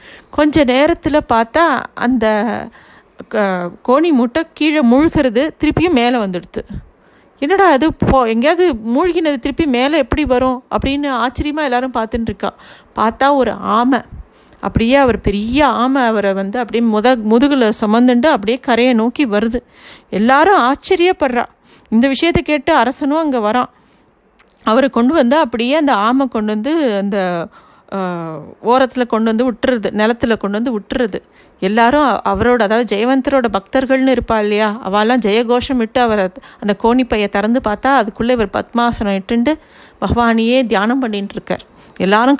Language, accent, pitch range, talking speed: Tamil, native, 220-270 Hz, 130 wpm